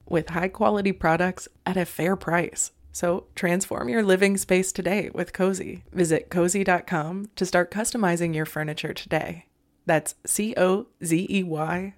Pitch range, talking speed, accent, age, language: 155-185 Hz, 125 wpm, American, 20-39, English